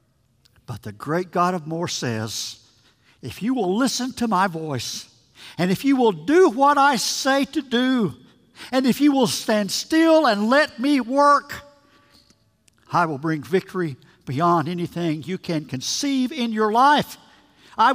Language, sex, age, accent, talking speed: English, male, 60-79, American, 155 wpm